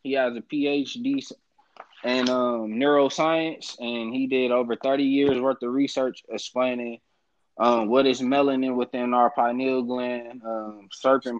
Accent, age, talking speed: American, 20-39, 135 wpm